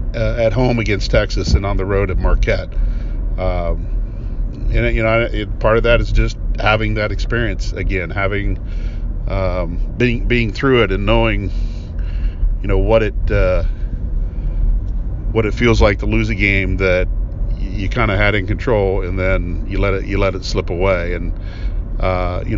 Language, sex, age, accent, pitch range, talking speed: English, male, 50-69, American, 90-110 Hz, 180 wpm